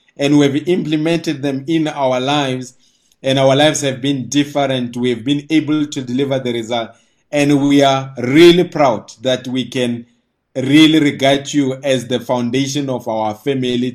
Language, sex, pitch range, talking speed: English, male, 125-145 Hz, 170 wpm